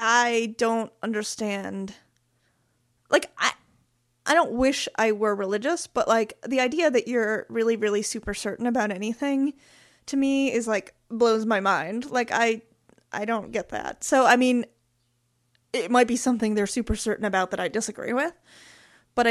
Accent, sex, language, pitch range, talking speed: American, female, English, 205-245 Hz, 160 wpm